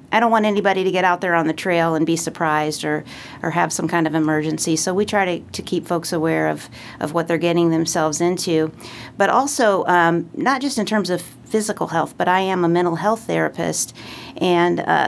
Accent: American